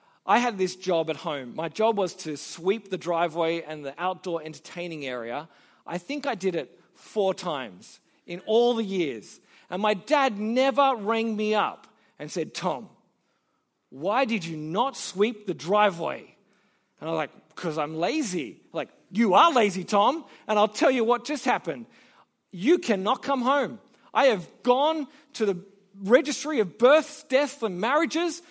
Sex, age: male, 40-59